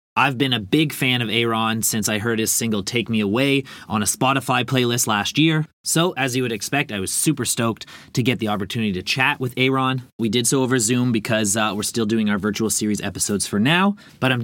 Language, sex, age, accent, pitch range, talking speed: English, male, 30-49, American, 110-135 Hz, 235 wpm